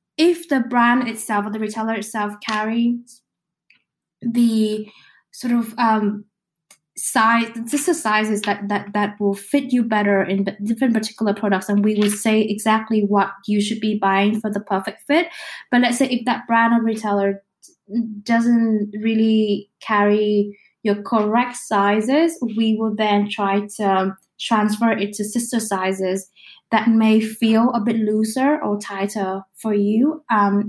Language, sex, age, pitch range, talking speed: English, female, 10-29, 195-225 Hz, 150 wpm